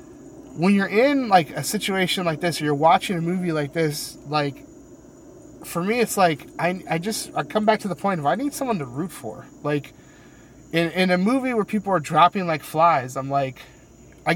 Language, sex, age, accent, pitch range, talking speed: English, male, 30-49, American, 140-180 Hz, 210 wpm